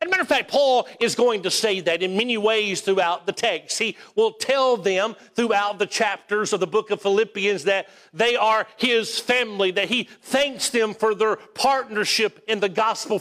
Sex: male